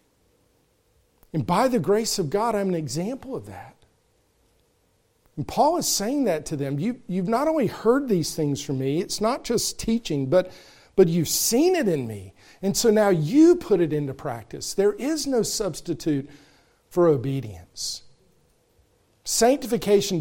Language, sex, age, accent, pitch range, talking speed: English, male, 50-69, American, 150-210 Hz, 155 wpm